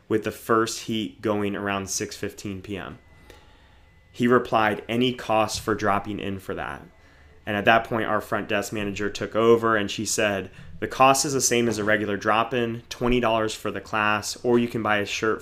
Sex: male